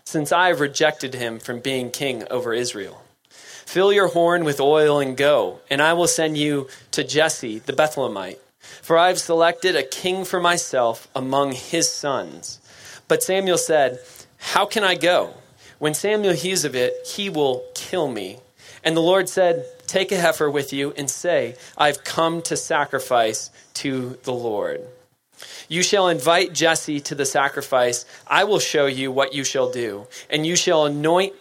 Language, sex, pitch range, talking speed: English, male, 135-175 Hz, 170 wpm